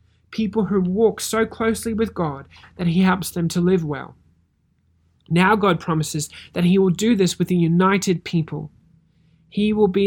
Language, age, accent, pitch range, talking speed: English, 30-49, Australian, 155-195 Hz, 175 wpm